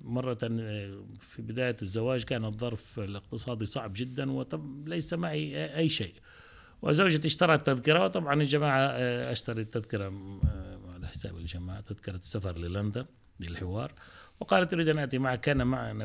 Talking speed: 130 wpm